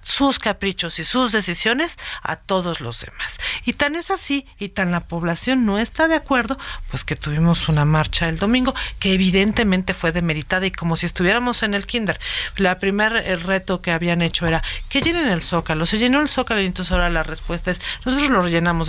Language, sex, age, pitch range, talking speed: Spanish, female, 50-69, 170-215 Hz, 205 wpm